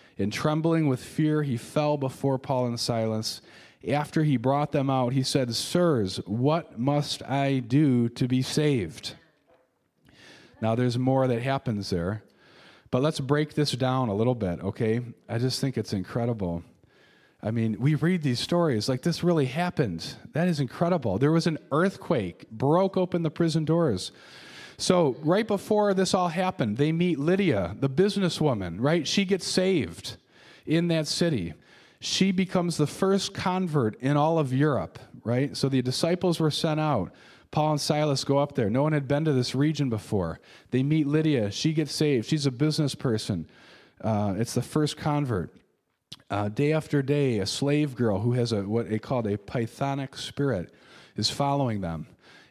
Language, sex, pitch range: English, male, 120-155 Hz